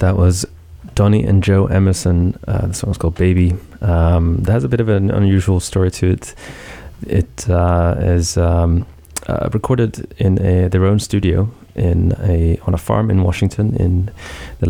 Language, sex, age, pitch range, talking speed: English, male, 20-39, 85-100 Hz, 170 wpm